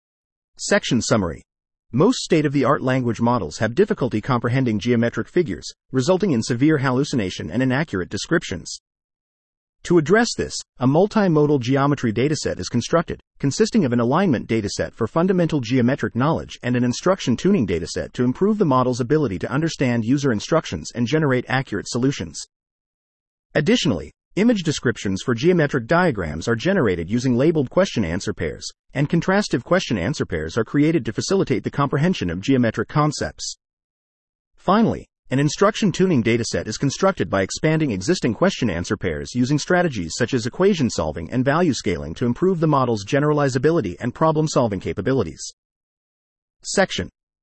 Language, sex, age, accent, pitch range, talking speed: English, male, 40-59, American, 115-160 Hz, 140 wpm